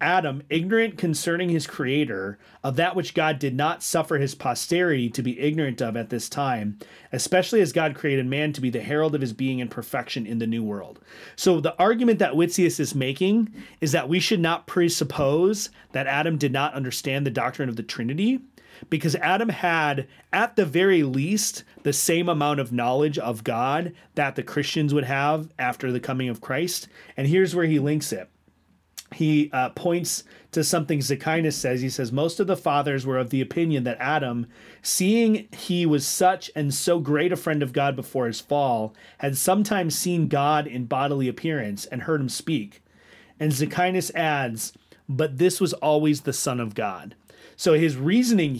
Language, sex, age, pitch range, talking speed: English, male, 30-49, 130-170 Hz, 185 wpm